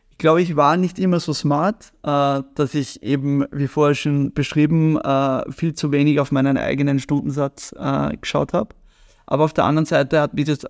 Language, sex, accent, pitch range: German, male, German, 135-155 Hz